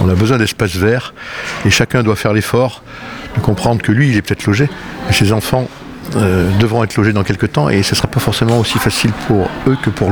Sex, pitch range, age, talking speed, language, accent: male, 95-120 Hz, 60-79, 230 wpm, French, French